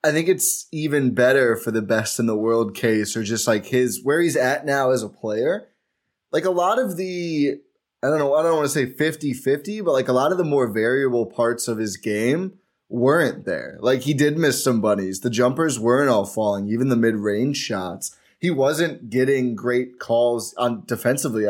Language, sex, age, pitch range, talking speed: English, male, 20-39, 110-140 Hz, 205 wpm